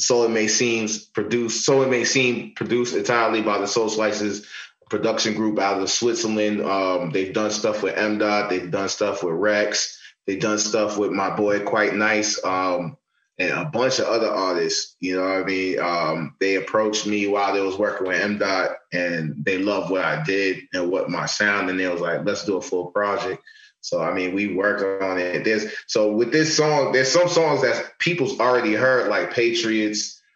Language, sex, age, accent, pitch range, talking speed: English, male, 20-39, American, 100-110 Hz, 200 wpm